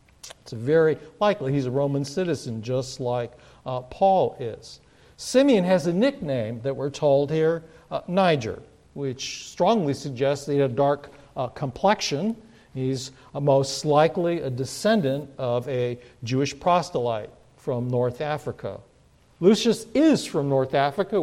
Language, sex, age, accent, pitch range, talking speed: English, male, 50-69, American, 130-170 Hz, 140 wpm